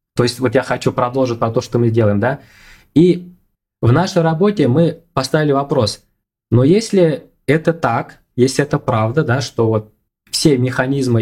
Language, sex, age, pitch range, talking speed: Russian, male, 20-39, 115-150 Hz, 150 wpm